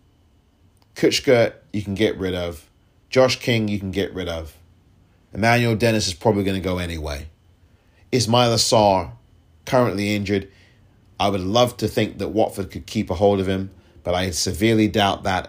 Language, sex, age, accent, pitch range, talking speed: English, male, 30-49, British, 90-105 Hz, 170 wpm